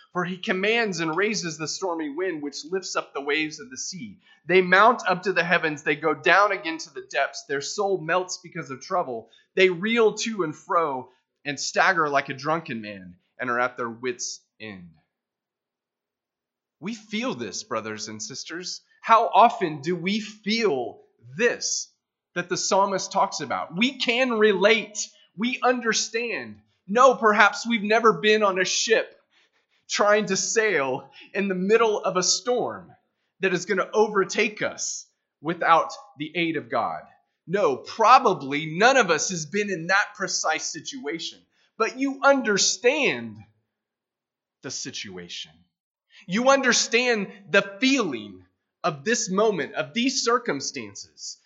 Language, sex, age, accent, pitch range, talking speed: English, male, 30-49, American, 160-230 Hz, 150 wpm